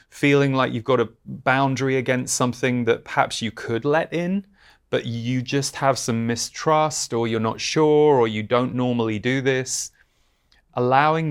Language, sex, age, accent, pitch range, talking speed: English, male, 30-49, British, 110-130 Hz, 165 wpm